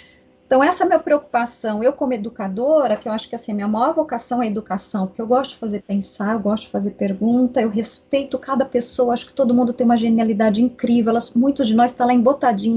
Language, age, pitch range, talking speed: Portuguese, 30-49, 225-270 Hz, 245 wpm